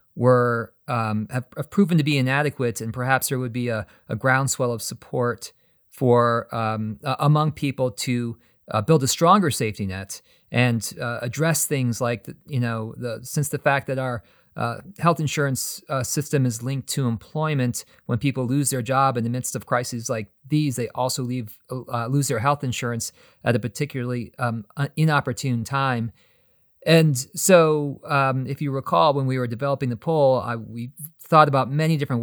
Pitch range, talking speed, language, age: 120-145 Hz, 180 wpm, English, 40-59